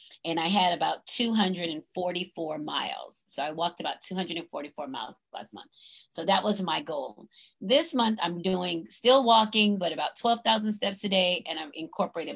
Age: 30-49